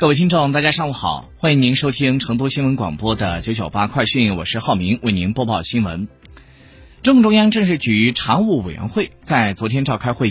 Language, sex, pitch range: Chinese, male, 100-160 Hz